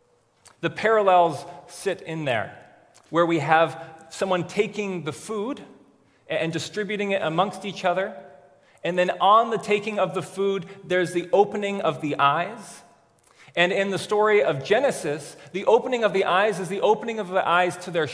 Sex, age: male, 30-49